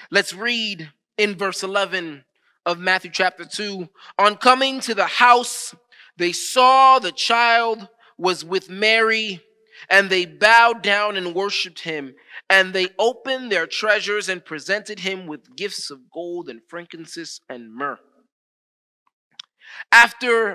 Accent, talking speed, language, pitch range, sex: American, 130 wpm, English, 165-230 Hz, male